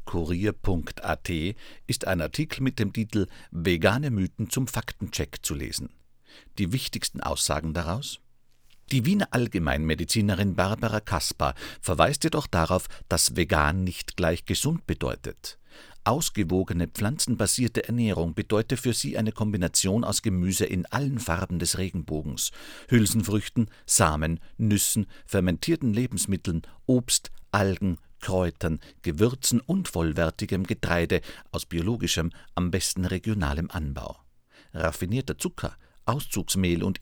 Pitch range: 85-115 Hz